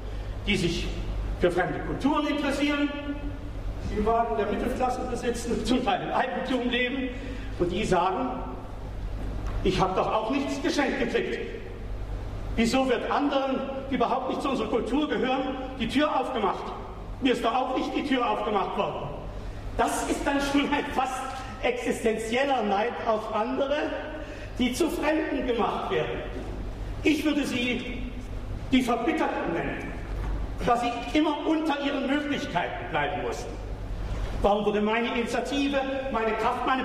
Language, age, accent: German, 50-69, German